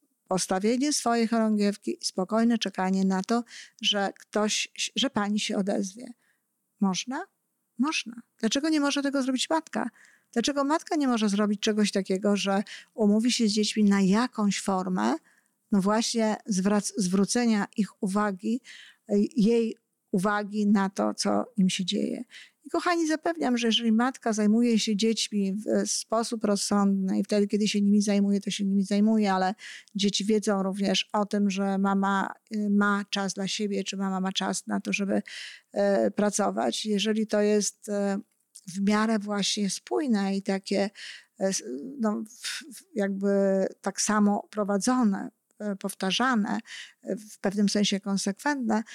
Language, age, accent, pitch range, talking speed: Polish, 50-69, native, 200-235 Hz, 135 wpm